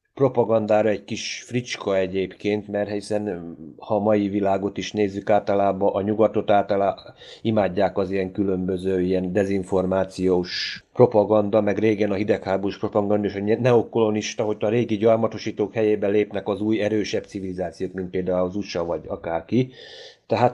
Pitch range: 100-115 Hz